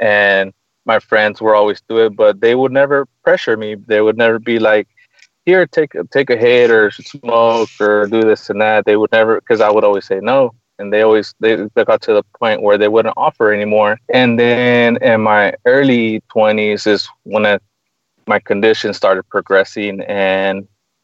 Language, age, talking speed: English, 20-39, 185 wpm